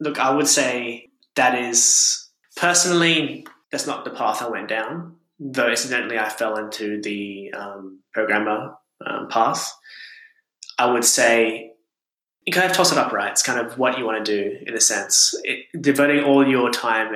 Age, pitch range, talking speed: 10-29, 110-150 Hz, 170 wpm